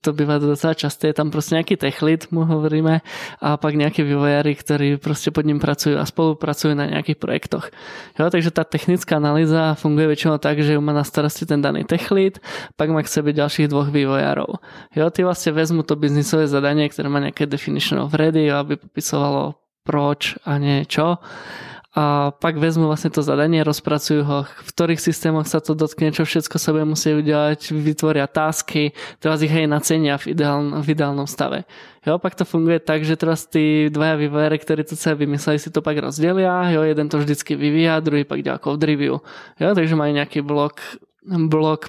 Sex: male